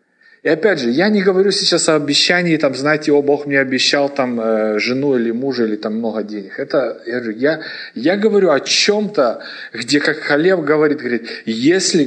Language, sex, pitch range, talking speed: English, male, 135-180 Hz, 190 wpm